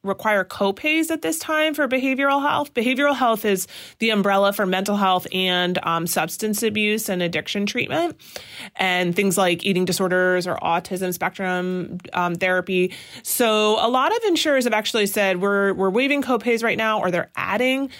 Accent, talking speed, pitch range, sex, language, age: American, 165 wpm, 185-225 Hz, female, English, 30-49